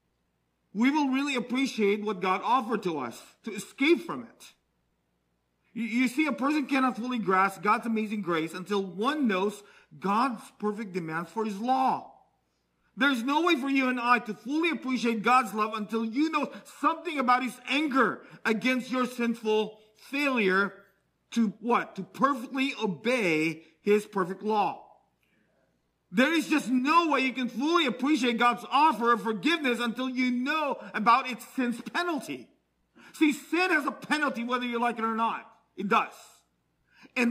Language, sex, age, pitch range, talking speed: English, male, 40-59, 215-275 Hz, 155 wpm